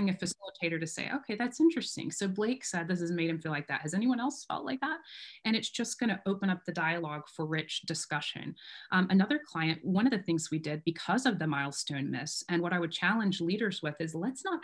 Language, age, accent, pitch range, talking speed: English, 30-49, American, 165-205 Hz, 240 wpm